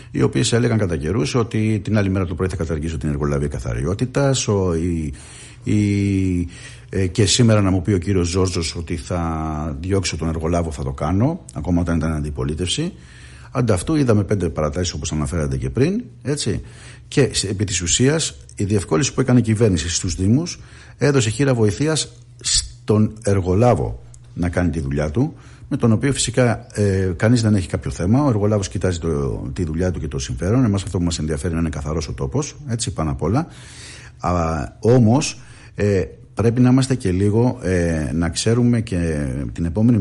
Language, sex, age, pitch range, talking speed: Greek, male, 60-79, 85-115 Hz, 170 wpm